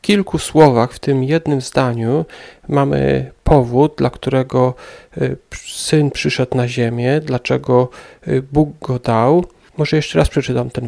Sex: male